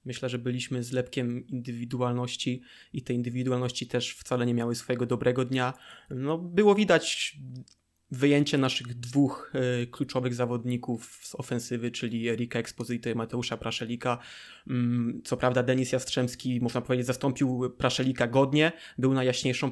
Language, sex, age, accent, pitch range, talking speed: Polish, male, 20-39, native, 125-140 Hz, 130 wpm